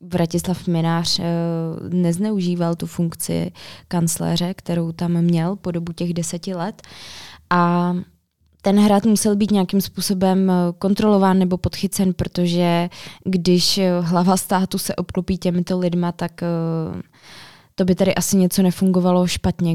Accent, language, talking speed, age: native, Czech, 120 wpm, 20-39